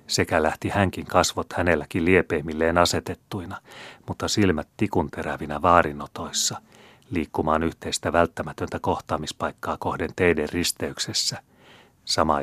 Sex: male